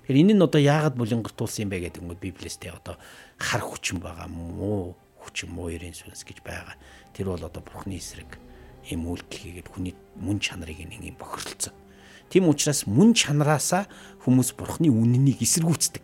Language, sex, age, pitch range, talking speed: English, male, 60-79, 85-125 Hz, 155 wpm